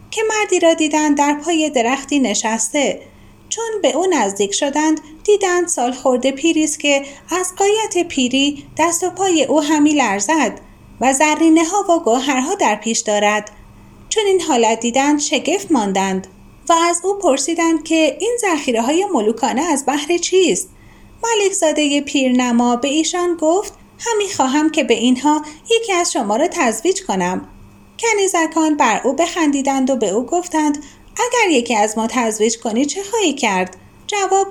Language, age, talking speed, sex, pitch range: Persian, 30-49, 155 wpm, female, 250-350 Hz